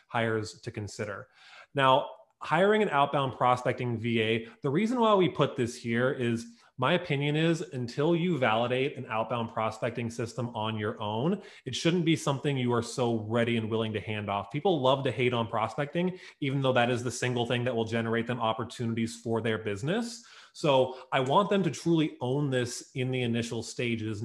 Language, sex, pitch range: English, male, 115-140 Hz